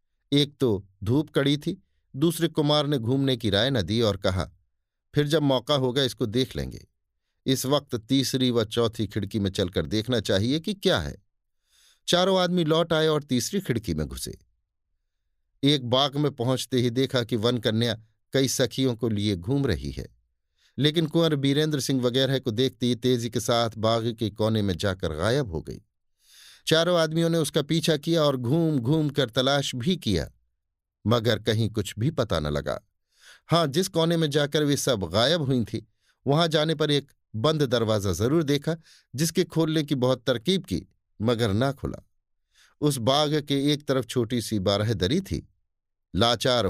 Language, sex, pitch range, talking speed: Hindi, male, 105-150 Hz, 175 wpm